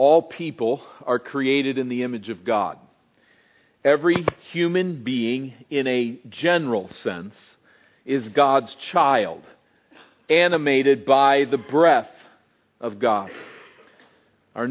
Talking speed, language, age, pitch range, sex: 105 wpm, English, 40-59, 135-170 Hz, male